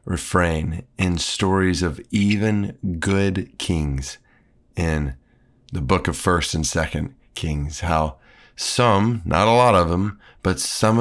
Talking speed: 130 wpm